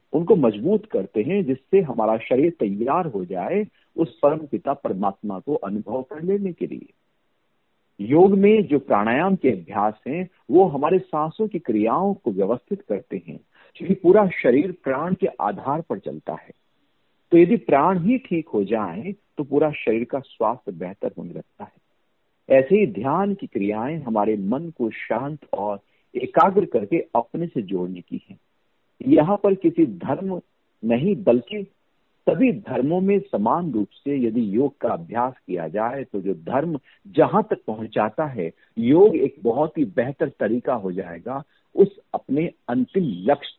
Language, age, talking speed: Hindi, 50-69, 155 wpm